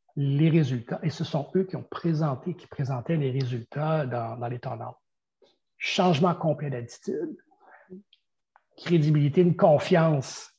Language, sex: French, male